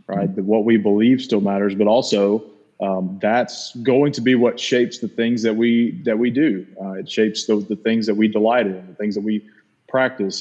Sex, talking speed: male, 215 wpm